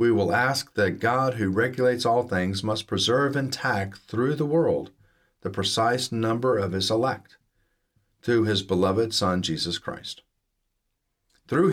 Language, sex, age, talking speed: English, male, 40-59, 145 wpm